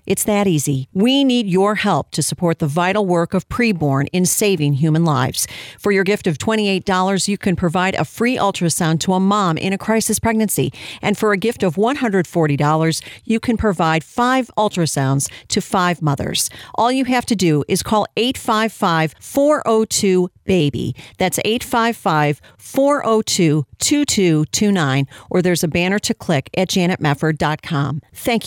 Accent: American